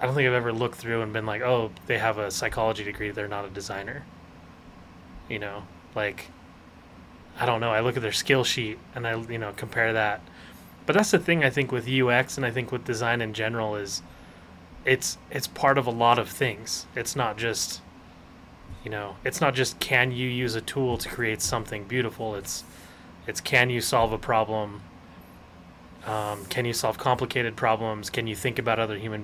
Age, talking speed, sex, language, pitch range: 20-39, 200 wpm, male, English, 95-125 Hz